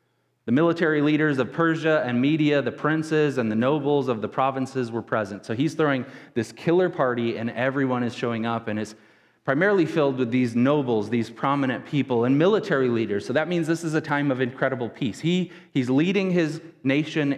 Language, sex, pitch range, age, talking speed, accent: English, male, 115-150 Hz, 30-49, 195 wpm, American